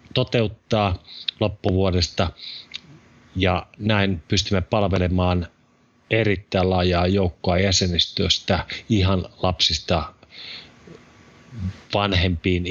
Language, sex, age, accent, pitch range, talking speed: Finnish, male, 30-49, native, 90-105 Hz, 60 wpm